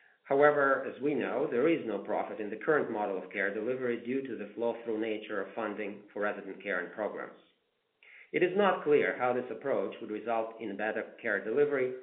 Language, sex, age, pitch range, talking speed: English, male, 40-59, 115-140 Hz, 205 wpm